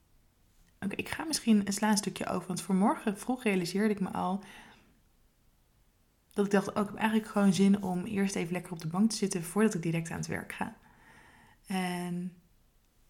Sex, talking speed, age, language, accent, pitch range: female, 190 wpm, 20-39, Dutch, Dutch, 190-215 Hz